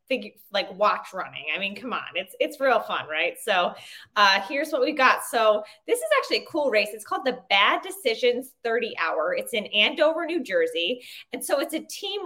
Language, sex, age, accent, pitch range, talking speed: English, female, 20-39, American, 210-285 Hz, 210 wpm